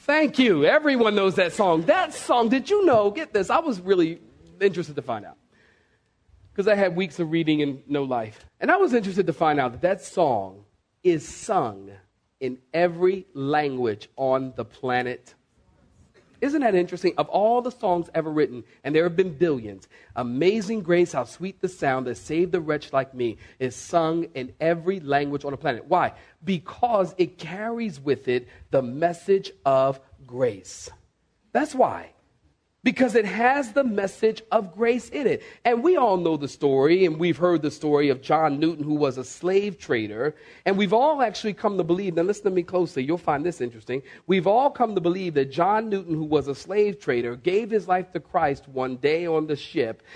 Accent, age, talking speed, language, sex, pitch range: American, 40-59, 190 wpm, English, male, 140-210 Hz